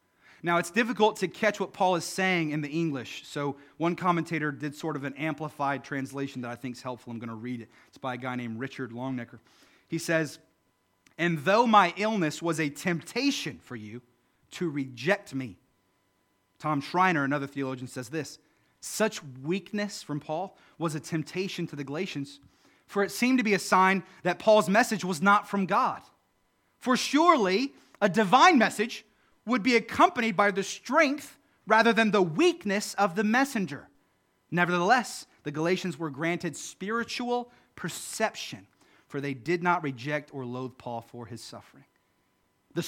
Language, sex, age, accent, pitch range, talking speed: English, male, 30-49, American, 135-215 Hz, 165 wpm